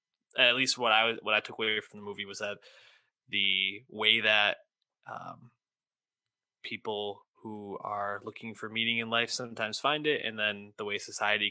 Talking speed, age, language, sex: 175 wpm, 20-39, English, male